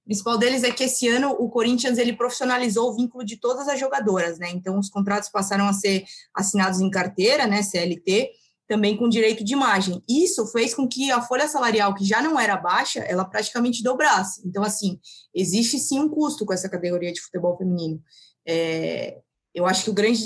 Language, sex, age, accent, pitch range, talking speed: Portuguese, female, 20-39, Brazilian, 185-240 Hz, 200 wpm